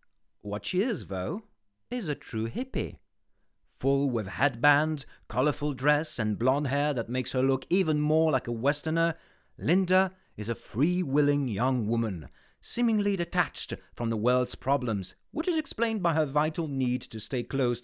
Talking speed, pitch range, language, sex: 160 wpm, 110-150 Hz, English, male